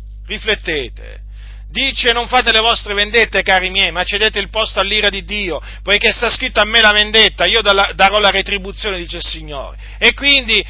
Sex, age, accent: male, 40-59, native